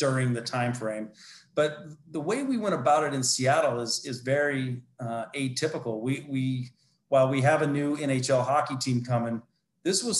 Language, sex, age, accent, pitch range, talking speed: English, male, 40-59, American, 125-150 Hz, 180 wpm